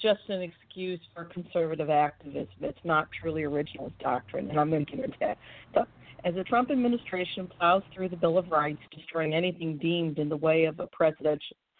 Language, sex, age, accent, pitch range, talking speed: English, female, 50-69, American, 155-185 Hz, 180 wpm